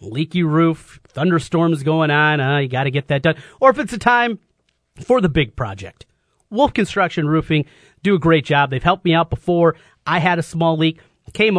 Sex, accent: male, American